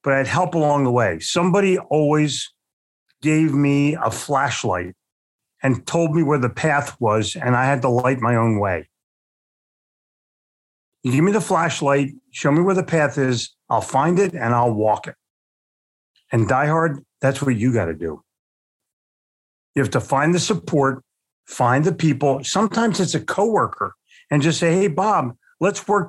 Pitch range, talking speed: 125-170 Hz, 165 wpm